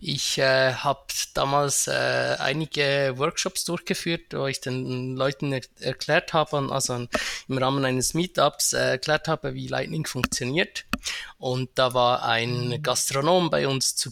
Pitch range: 130-155 Hz